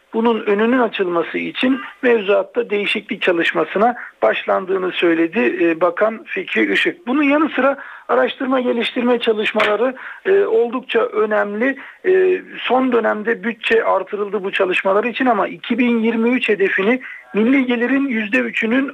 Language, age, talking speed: Turkish, 50-69, 105 wpm